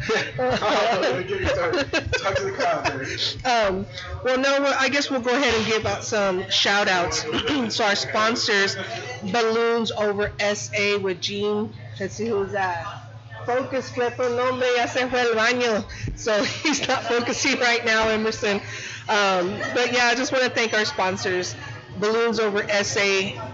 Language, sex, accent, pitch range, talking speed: English, female, American, 195-230 Hz, 120 wpm